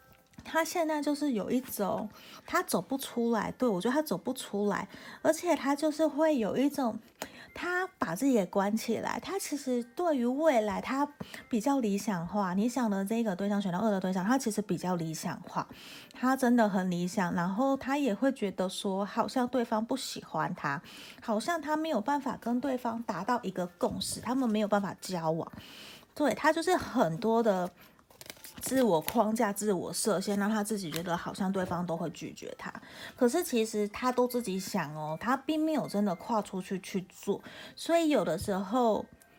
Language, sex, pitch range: Chinese, female, 195-250 Hz